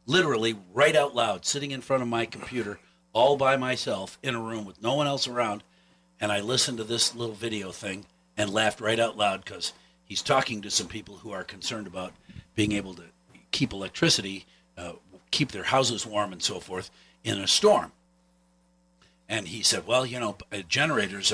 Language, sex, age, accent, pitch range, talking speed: English, male, 50-69, American, 95-135 Hz, 190 wpm